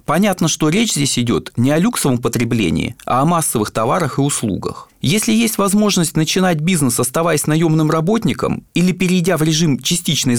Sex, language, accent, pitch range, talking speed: male, Russian, native, 135-195 Hz, 160 wpm